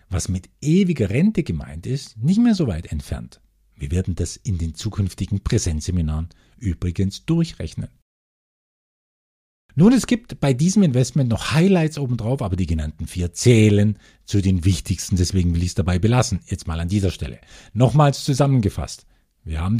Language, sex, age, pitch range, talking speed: German, male, 50-69, 85-145 Hz, 160 wpm